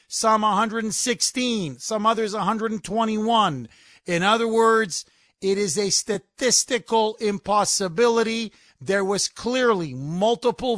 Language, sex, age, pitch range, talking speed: English, male, 50-69, 180-225 Hz, 95 wpm